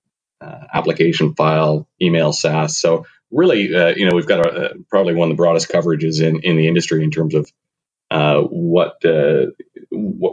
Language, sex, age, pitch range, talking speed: English, male, 30-49, 80-95 Hz, 180 wpm